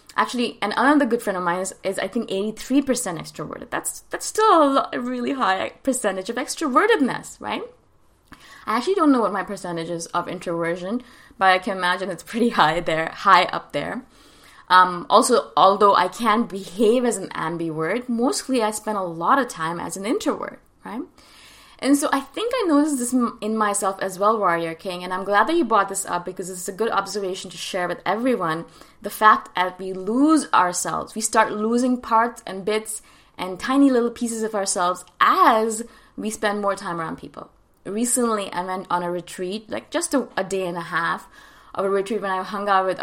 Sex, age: female, 20-39